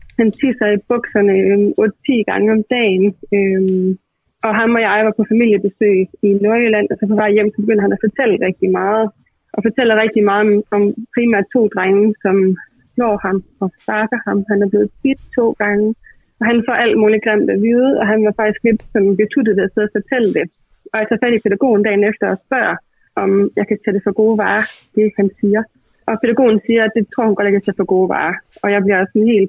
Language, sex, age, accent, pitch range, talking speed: Danish, female, 20-39, native, 200-225 Hz, 220 wpm